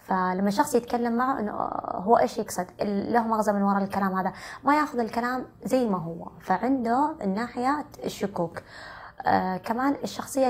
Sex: female